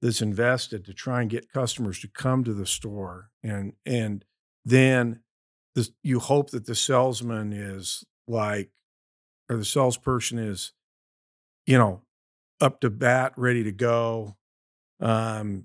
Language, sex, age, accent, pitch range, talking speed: English, male, 50-69, American, 105-130 Hz, 135 wpm